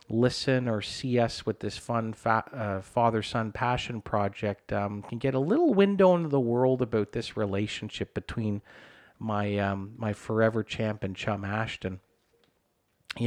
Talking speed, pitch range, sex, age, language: 150 wpm, 105-125 Hz, male, 40-59, English